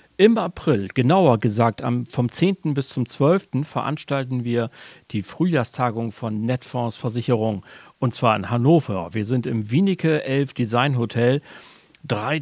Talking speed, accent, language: 135 wpm, German, German